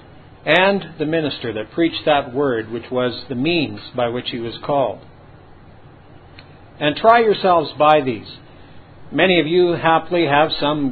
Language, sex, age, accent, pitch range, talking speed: English, male, 50-69, American, 120-160 Hz, 150 wpm